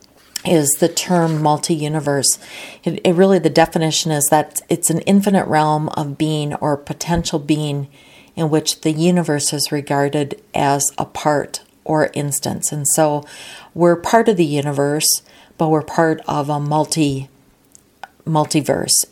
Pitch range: 145-180 Hz